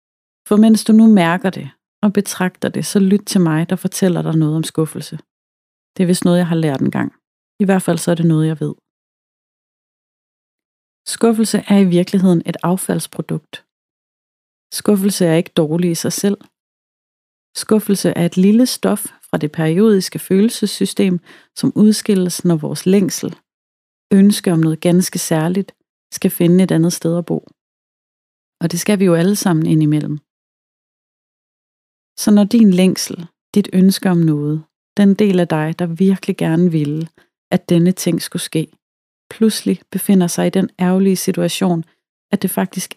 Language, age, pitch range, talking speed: Danish, 30-49, 165-195 Hz, 160 wpm